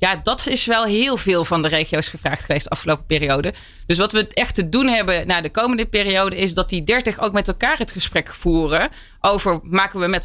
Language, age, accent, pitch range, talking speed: Dutch, 30-49, Dutch, 180-230 Hz, 230 wpm